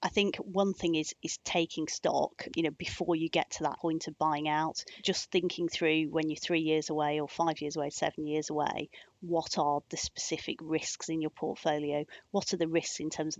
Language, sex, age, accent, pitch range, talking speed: English, female, 30-49, British, 150-165 Hz, 220 wpm